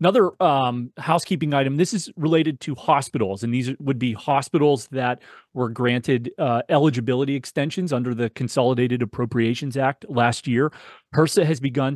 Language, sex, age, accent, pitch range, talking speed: English, male, 30-49, American, 115-140 Hz, 150 wpm